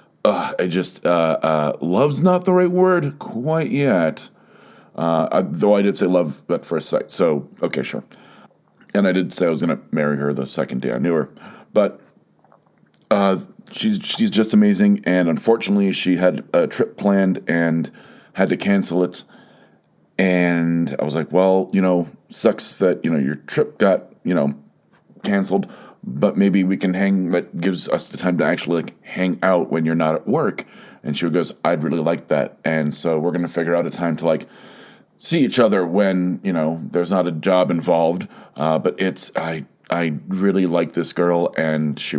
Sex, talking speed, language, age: male, 195 wpm, English, 40-59